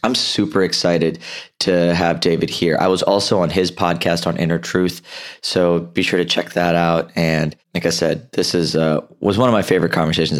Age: 20-39